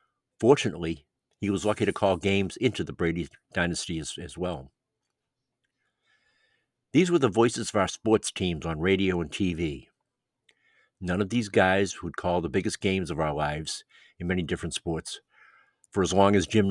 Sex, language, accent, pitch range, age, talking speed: male, English, American, 85-110 Hz, 60-79, 170 wpm